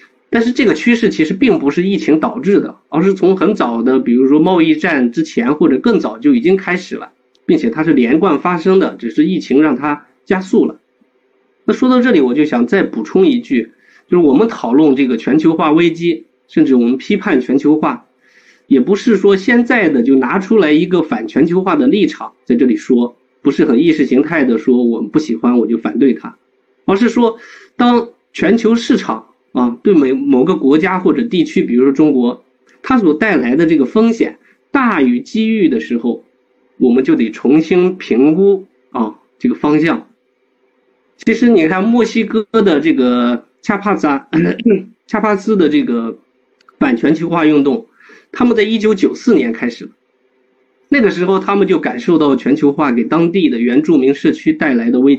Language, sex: Chinese, male